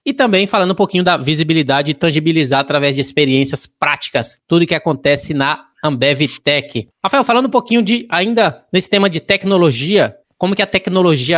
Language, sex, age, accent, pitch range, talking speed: Portuguese, male, 20-39, Brazilian, 150-190 Hz, 180 wpm